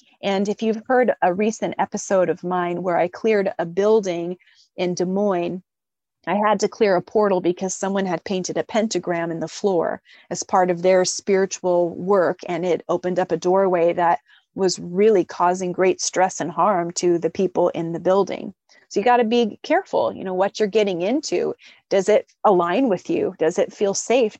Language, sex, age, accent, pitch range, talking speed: English, female, 30-49, American, 175-210 Hz, 195 wpm